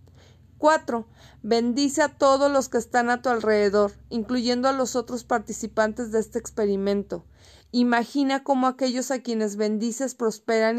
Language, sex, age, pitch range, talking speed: Spanish, female, 30-49, 220-260 Hz, 140 wpm